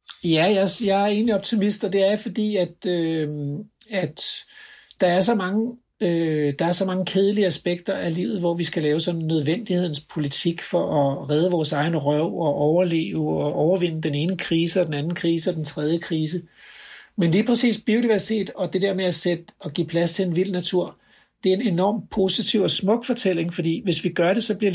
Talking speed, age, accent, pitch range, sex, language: 210 wpm, 60-79, native, 160-205 Hz, male, Danish